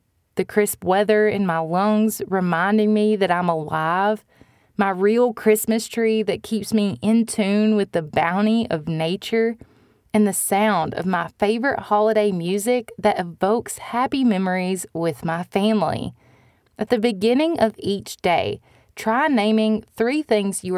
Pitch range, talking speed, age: 190-225 Hz, 145 wpm, 20-39